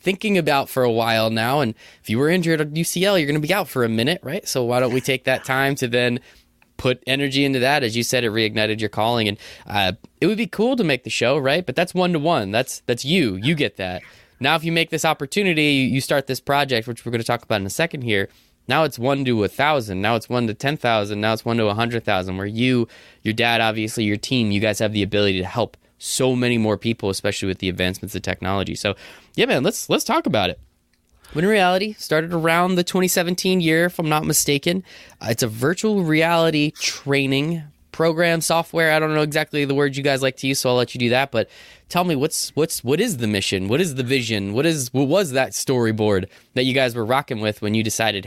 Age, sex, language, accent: 20-39, male, English, American